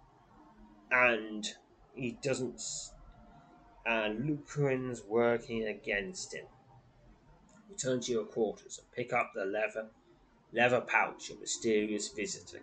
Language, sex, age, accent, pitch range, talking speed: English, male, 20-39, British, 105-130 Hz, 110 wpm